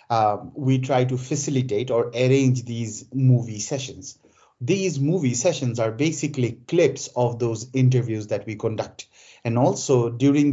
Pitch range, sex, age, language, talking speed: 115-140 Hz, male, 30-49, English, 140 wpm